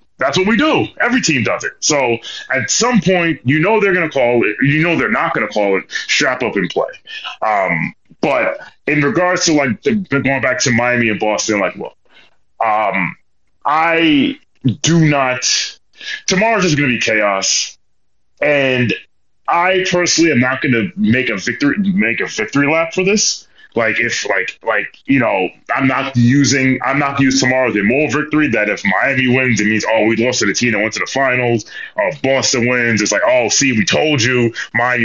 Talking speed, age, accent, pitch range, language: 205 wpm, 30-49, American, 120-180 Hz, English